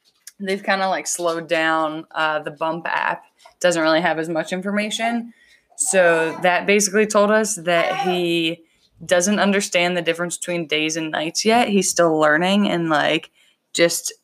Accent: American